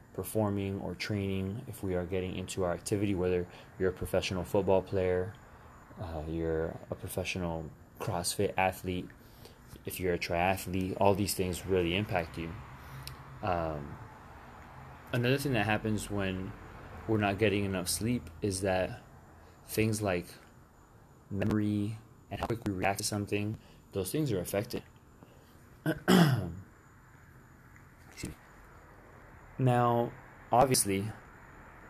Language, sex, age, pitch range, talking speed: English, male, 20-39, 95-115 Hz, 115 wpm